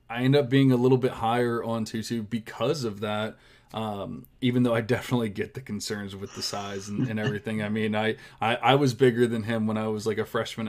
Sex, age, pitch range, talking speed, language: male, 20-39, 110-130 Hz, 235 wpm, English